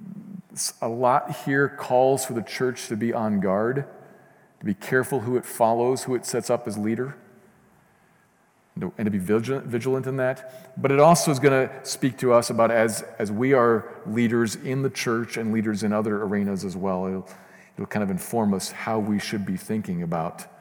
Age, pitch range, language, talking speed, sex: 40-59, 110-140 Hz, English, 190 wpm, male